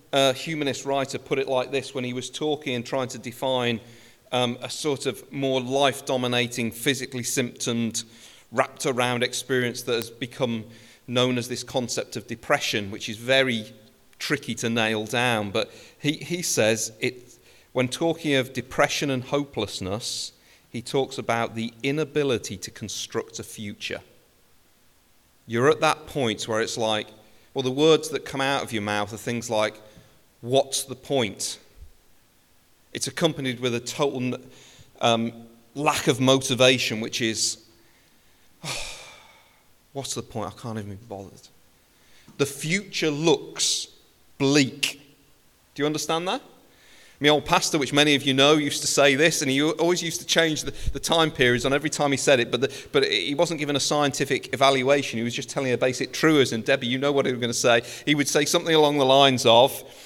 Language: French